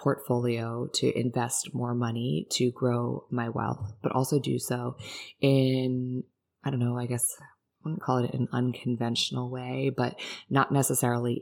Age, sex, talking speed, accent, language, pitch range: 20-39, female, 150 wpm, American, English, 120-135 Hz